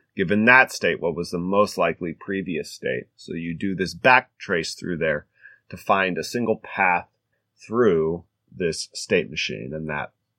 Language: English